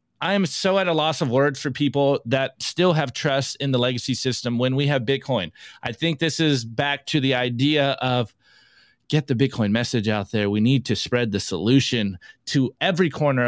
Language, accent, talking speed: English, American, 205 wpm